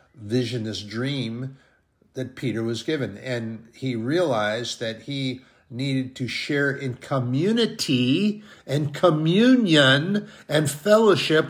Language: English